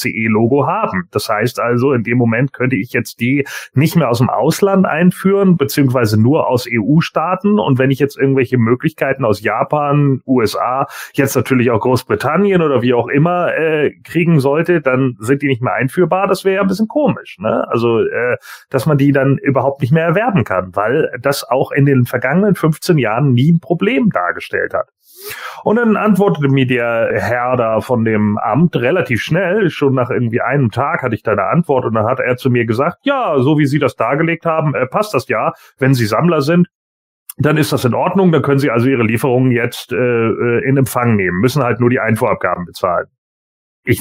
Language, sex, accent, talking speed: German, male, German, 200 wpm